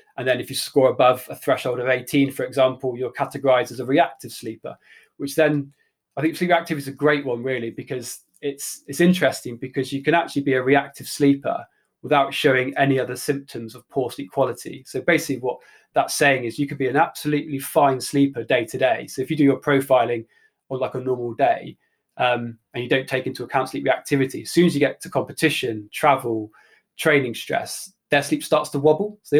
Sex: male